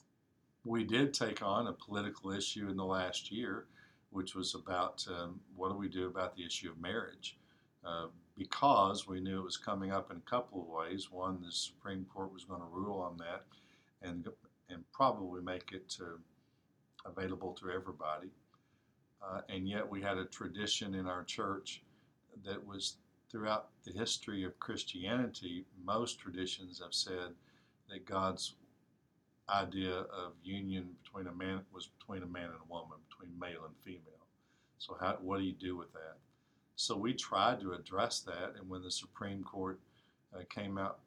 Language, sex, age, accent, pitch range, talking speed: English, male, 60-79, American, 90-100 Hz, 170 wpm